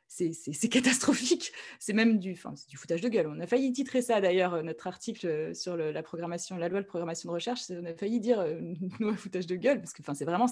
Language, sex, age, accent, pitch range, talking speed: French, female, 20-39, French, 180-240 Hz, 260 wpm